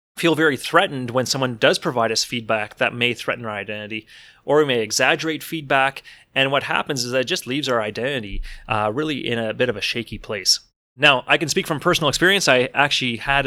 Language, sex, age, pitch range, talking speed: English, male, 30-49, 115-140 Hz, 215 wpm